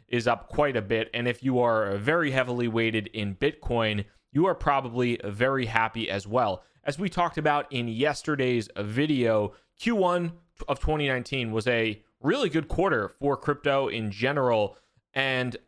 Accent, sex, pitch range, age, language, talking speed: American, male, 120-150 Hz, 30-49, English, 155 wpm